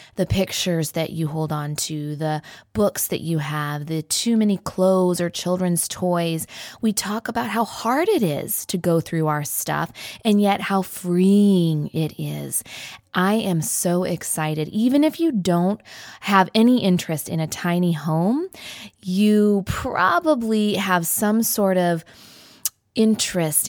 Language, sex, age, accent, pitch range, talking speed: English, female, 20-39, American, 160-200 Hz, 150 wpm